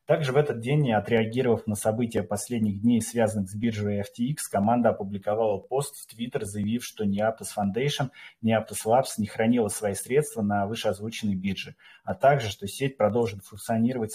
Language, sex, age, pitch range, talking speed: Russian, male, 30-49, 100-120 Hz, 170 wpm